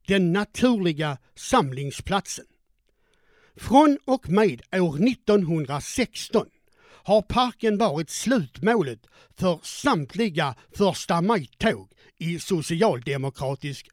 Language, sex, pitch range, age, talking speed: Swedish, male, 160-225 Hz, 60-79, 80 wpm